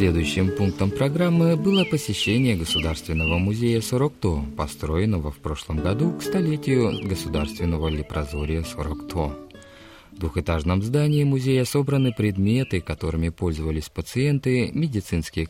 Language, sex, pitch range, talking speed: Russian, male, 80-130 Hz, 105 wpm